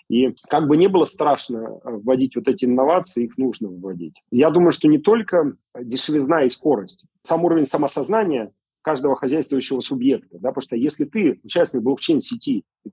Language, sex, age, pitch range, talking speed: Russian, male, 40-59, 125-200 Hz, 165 wpm